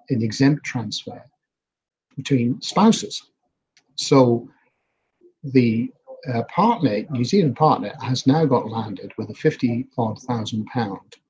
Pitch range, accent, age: 110-140 Hz, British, 50-69